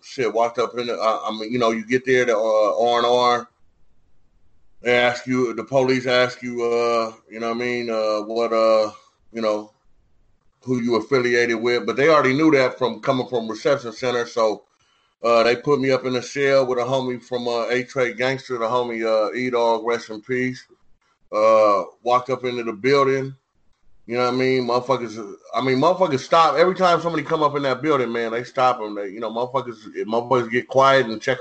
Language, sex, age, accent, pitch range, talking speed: English, male, 30-49, American, 110-125 Hz, 210 wpm